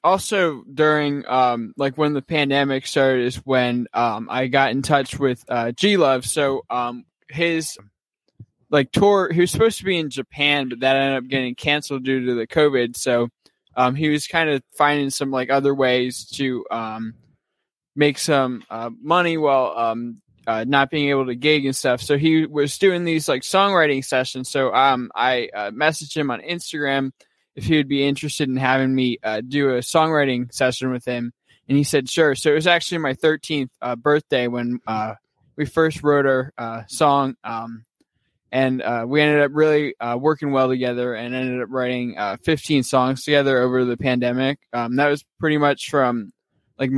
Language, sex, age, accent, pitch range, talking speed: English, male, 20-39, American, 125-150 Hz, 190 wpm